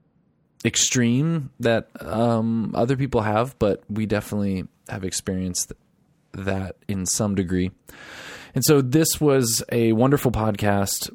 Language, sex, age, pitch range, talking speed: English, male, 20-39, 100-150 Hz, 120 wpm